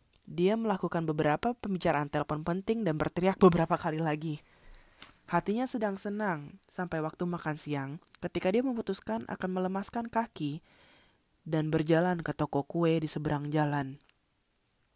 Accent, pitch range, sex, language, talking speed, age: native, 155-205 Hz, female, Indonesian, 130 wpm, 20-39